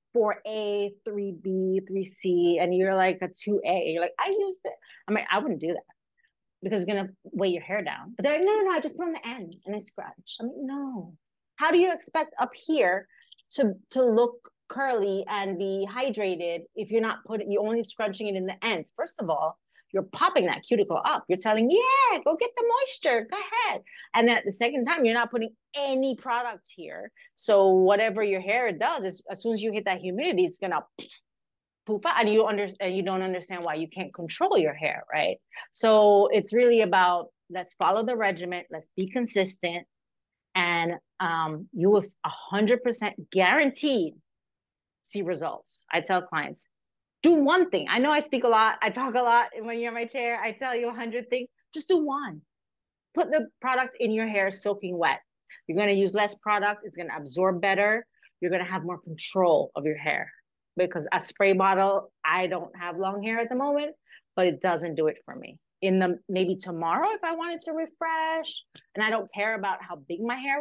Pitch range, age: 185-255 Hz, 30-49